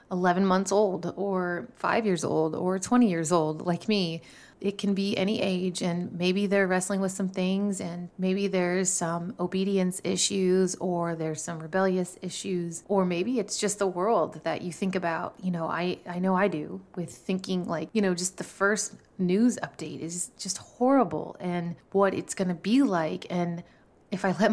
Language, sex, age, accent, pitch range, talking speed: English, female, 30-49, American, 175-200 Hz, 190 wpm